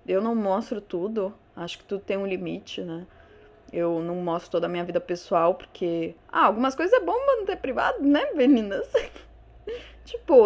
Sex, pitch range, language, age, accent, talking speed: female, 190-270 Hz, Portuguese, 20-39, Brazilian, 170 wpm